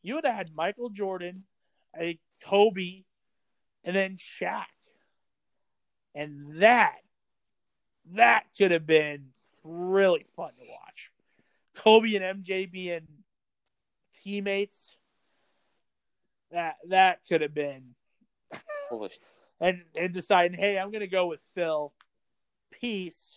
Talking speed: 105 wpm